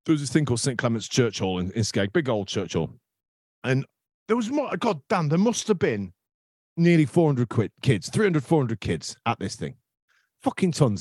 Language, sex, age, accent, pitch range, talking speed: English, male, 40-59, British, 105-155 Hz, 200 wpm